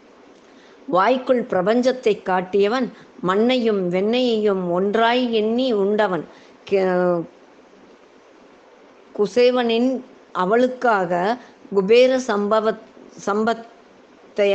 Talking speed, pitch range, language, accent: 55 wpm, 200-245 Hz, Tamil, native